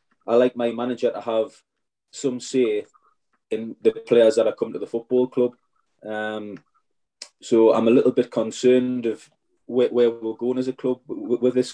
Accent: British